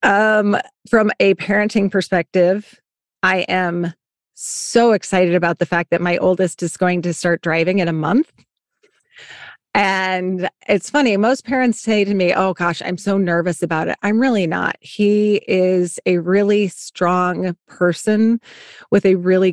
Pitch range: 175-210 Hz